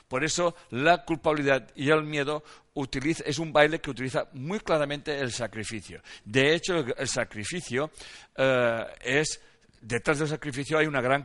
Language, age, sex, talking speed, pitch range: Spanish, 60-79, male, 150 wpm, 125-170 Hz